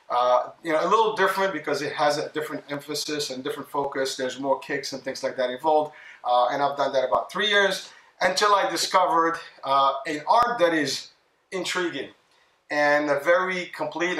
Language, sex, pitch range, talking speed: English, male, 140-170 Hz, 185 wpm